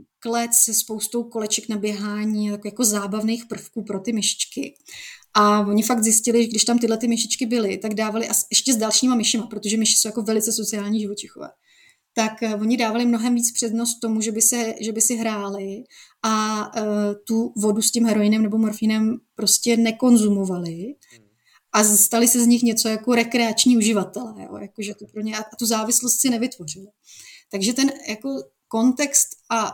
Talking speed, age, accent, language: 175 wpm, 30-49, native, Czech